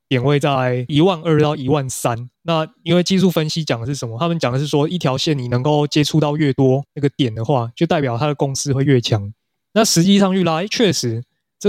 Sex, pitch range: male, 130-170 Hz